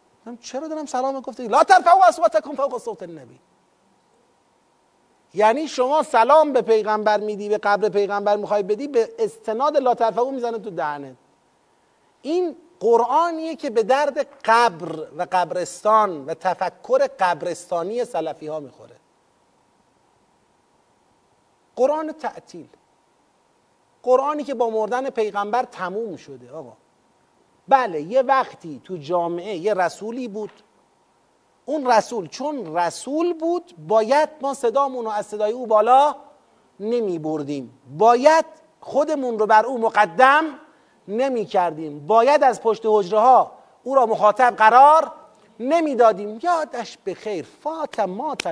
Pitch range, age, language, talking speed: 205-280 Hz, 40-59, Persian, 120 wpm